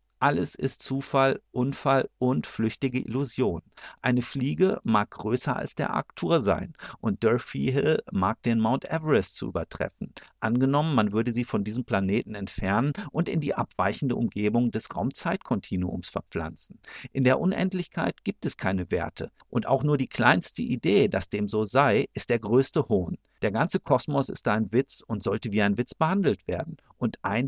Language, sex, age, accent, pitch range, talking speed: German, male, 50-69, German, 110-140 Hz, 165 wpm